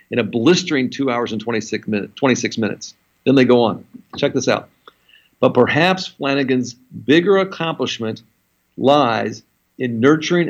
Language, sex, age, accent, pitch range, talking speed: English, male, 50-69, American, 120-150 Hz, 145 wpm